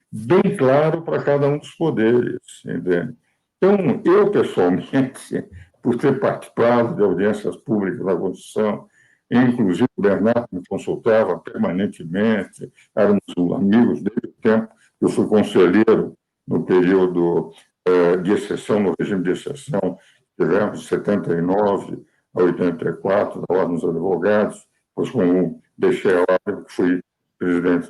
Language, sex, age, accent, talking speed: Portuguese, male, 60-79, Brazilian, 125 wpm